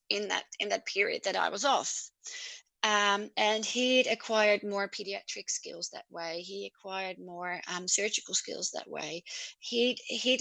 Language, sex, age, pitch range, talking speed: English, female, 30-49, 195-255 Hz, 155 wpm